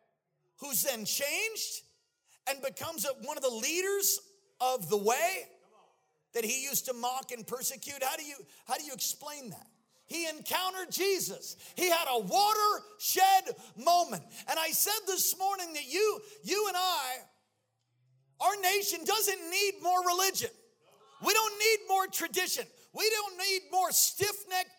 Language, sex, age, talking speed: English, male, 50-69, 150 wpm